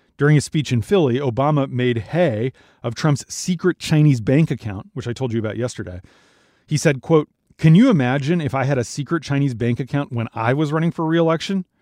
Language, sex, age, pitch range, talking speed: English, male, 30-49, 120-150 Hz, 205 wpm